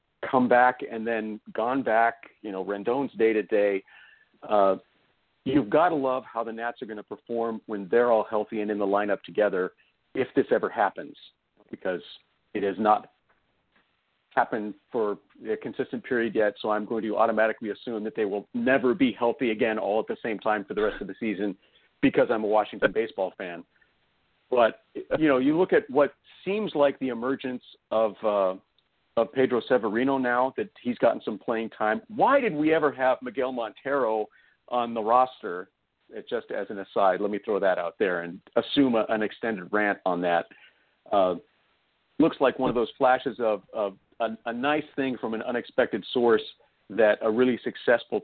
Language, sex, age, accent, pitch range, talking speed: English, male, 40-59, American, 105-130 Hz, 185 wpm